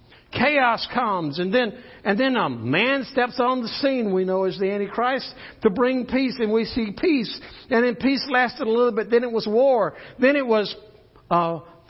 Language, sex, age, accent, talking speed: English, male, 60-79, American, 195 wpm